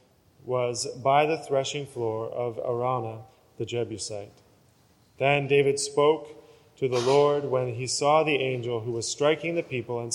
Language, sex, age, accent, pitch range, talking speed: English, male, 20-39, American, 120-145 Hz, 155 wpm